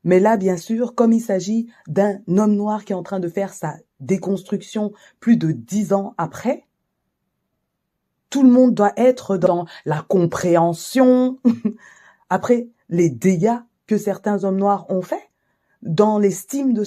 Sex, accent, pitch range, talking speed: female, French, 150-210 Hz, 155 wpm